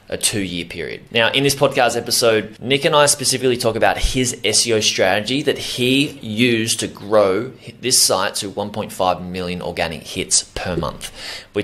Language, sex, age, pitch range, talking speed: English, male, 20-39, 90-110 Hz, 170 wpm